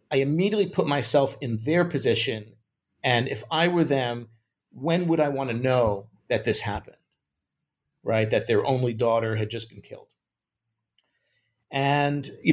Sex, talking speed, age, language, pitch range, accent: male, 155 wpm, 40-59, English, 110-130 Hz, American